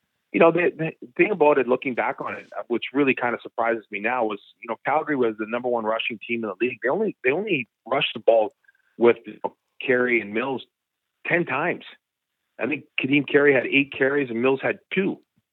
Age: 40-59